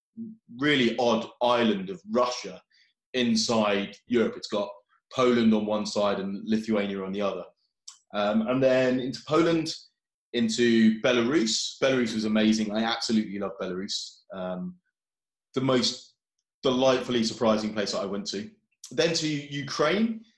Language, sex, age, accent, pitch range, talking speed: English, male, 20-39, British, 110-140 Hz, 135 wpm